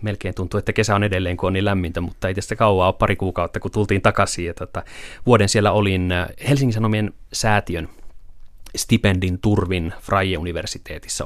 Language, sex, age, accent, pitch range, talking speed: Finnish, male, 30-49, native, 95-110 Hz, 155 wpm